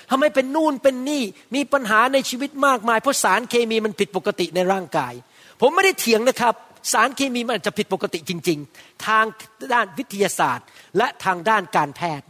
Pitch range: 220-295 Hz